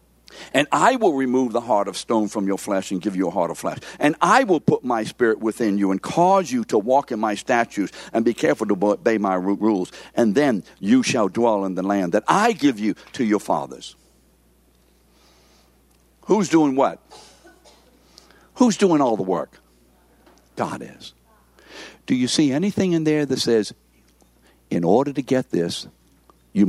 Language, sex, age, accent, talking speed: English, male, 60-79, American, 180 wpm